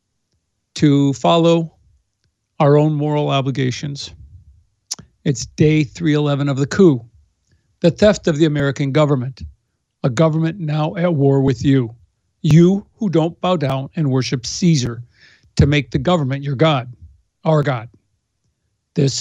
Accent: American